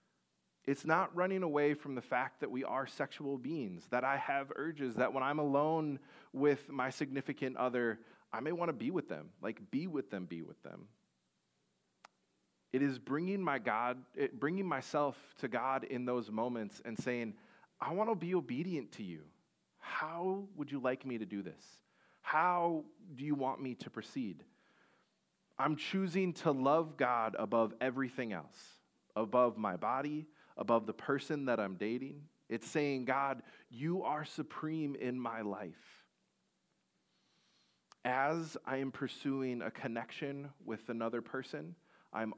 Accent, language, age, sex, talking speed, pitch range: American, English, 30-49, male, 155 wpm, 125-155 Hz